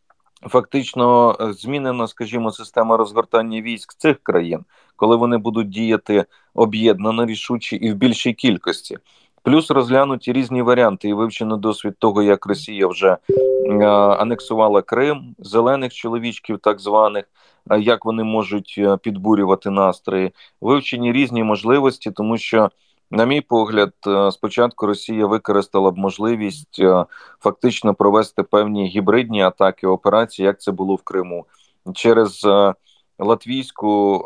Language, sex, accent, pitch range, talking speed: Ukrainian, male, native, 100-115 Hz, 125 wpm